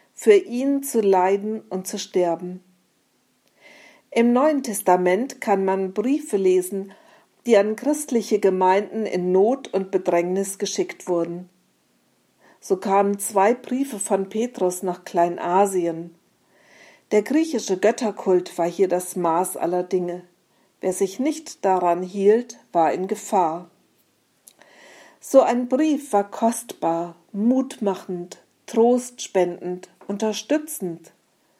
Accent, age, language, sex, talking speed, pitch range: German, 50-69, German, female, 110 wpm, 185-235 Hz